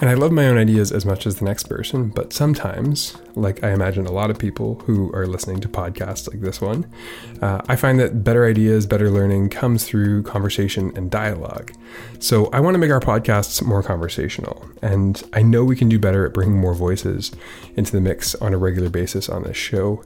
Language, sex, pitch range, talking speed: English, male, 95-115 Hz, 215 wpm